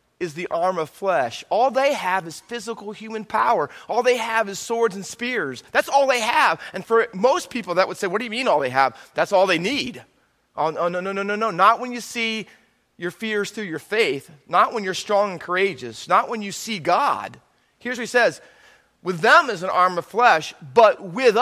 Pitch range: 170-230 Hz